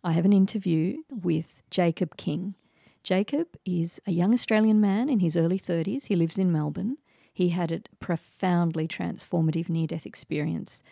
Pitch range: 160-185 Hz